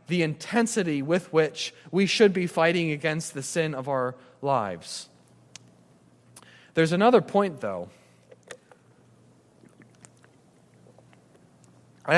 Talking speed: 95 wpm